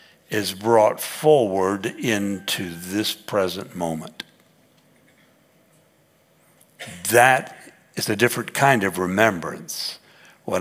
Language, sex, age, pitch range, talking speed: English, male, 60-79, 95-120 Hz, 85 wpm